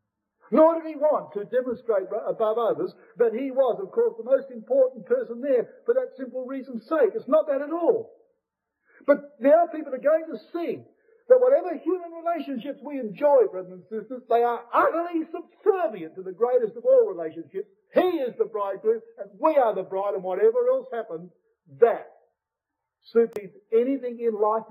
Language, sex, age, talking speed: English, male, 50-69, 175 wpm